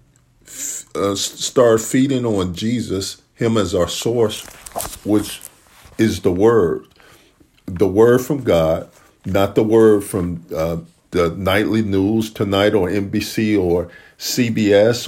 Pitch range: 95-120 Hz